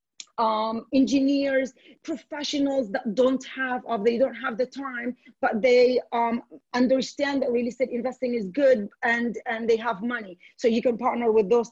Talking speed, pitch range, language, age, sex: 170 wpm, 235-275 Hz, English, 40-59, female